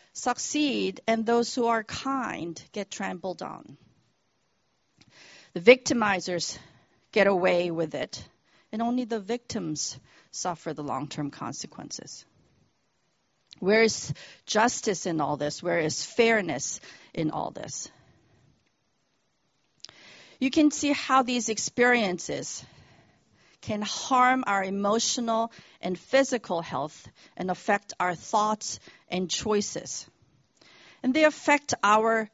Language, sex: English, female